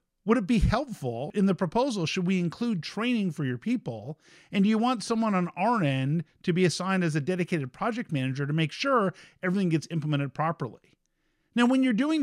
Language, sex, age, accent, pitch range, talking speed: English, male, 50-69, American, 145-195 Hz, 200 wpm